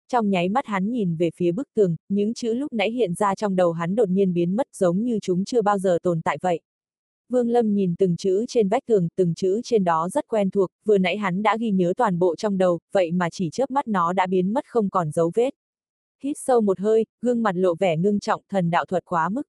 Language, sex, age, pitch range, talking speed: Vietnamese, female, 20-39, 175-220 Hz, 260 wpm